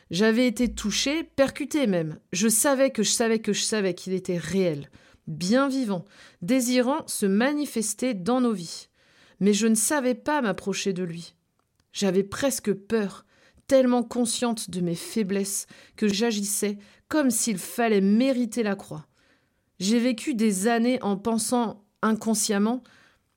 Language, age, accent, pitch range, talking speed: French, 30-49, French, 190-235 Hz, 140 wpm